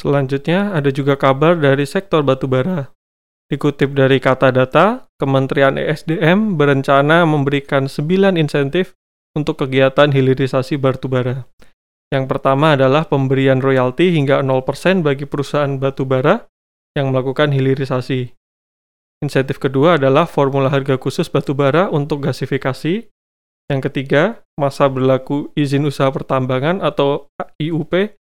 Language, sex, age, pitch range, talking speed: Indonesian, male, 20-39, 135-155 Hz, 110 wpm